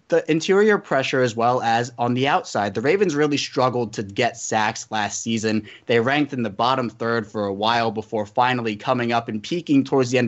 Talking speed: 210 wpm